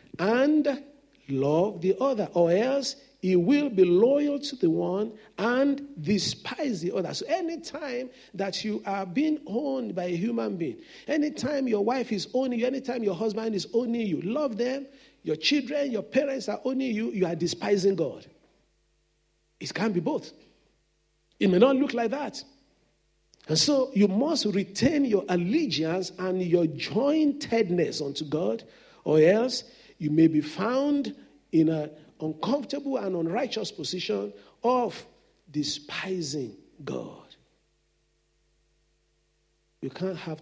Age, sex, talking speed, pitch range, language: 50-69, male, 140 wpm, 160-255 Hz, English